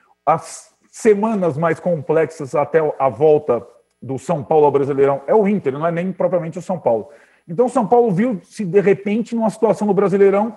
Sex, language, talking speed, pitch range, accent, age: male, Portuguese, 185 wpm, 150-205 Hz, Brazilian, 40-59